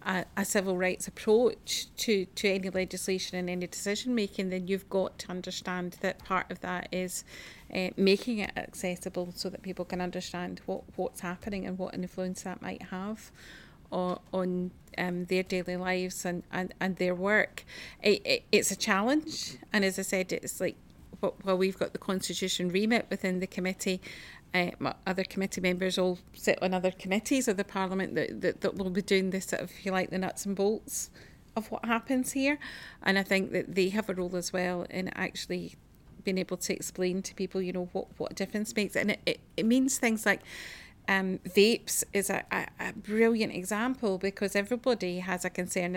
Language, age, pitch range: English, 40-59, 185-205 Hz